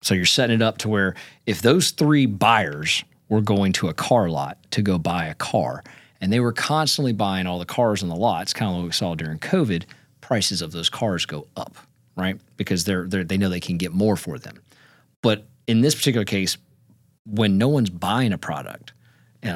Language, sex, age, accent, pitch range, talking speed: English, male, 40-59, American, 100-140 Hz, 210 wpm